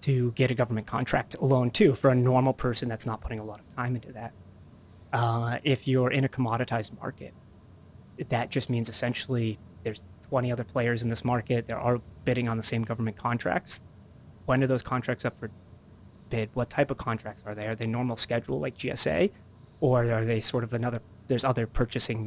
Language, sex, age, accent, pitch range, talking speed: English, male, 30-49, American, 110-130 Hz, 200 wpm